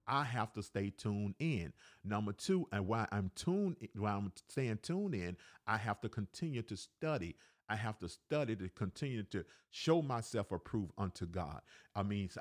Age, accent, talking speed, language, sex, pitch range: 50-69, American, 185 wpm, English, male, 95-135 Hz